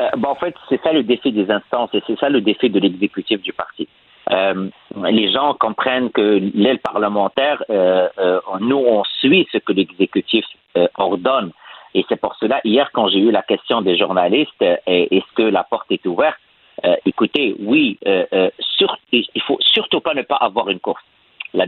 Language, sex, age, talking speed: French, male, 50-69, 195 wpm